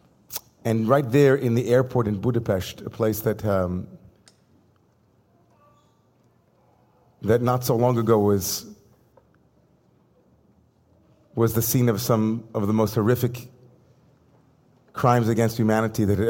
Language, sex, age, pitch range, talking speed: English, male, 40-59, 105-120 Hz, 120 wpm